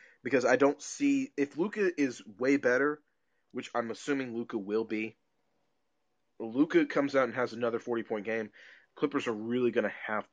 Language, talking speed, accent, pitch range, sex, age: English, 175 wpm, American, 120-150 Hz, male, 20-39